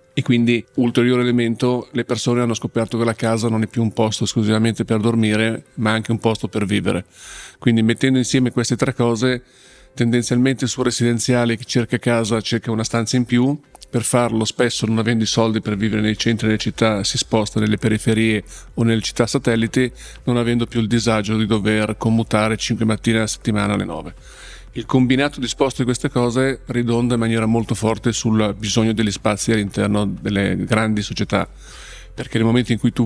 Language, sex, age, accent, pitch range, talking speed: Italian, male, 40-59, native, 110-120 Hz, 185 wpm